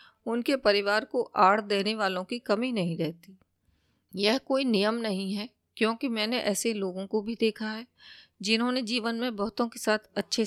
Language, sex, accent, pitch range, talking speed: Hindi, female, native, 190-230 Hz, 170 wpm